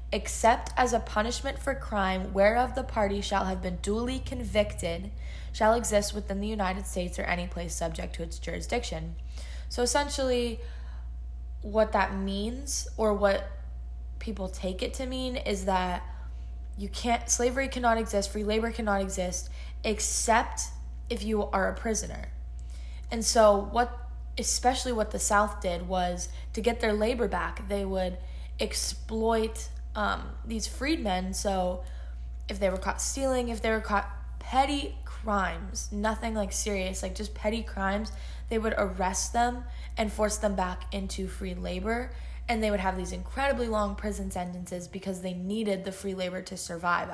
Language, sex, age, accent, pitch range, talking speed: English, female, 10-29, American, 180-220 Hz, 155 wpm